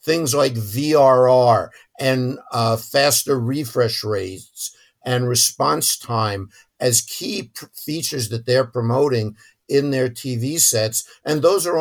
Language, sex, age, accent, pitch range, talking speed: English, male, 60-79, American, 115-145 Hz, 125 wpm